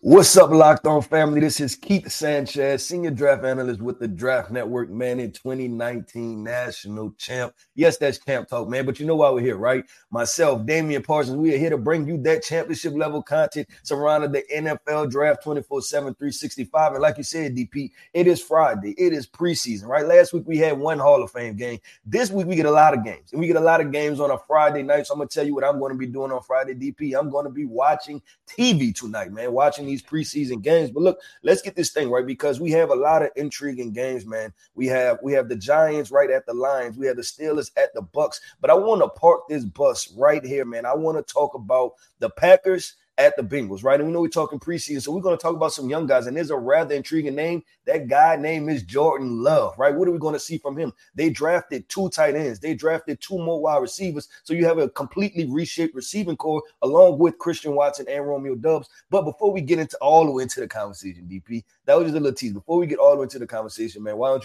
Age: 30-49